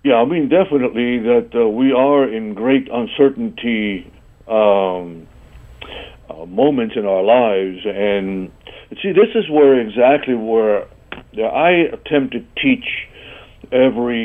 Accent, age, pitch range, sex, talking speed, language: American, 60-79, 110-145 Hz, male, 130 wpm, English